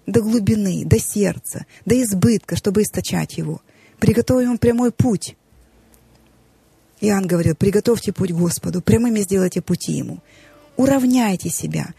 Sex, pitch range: female, 180-230 Hz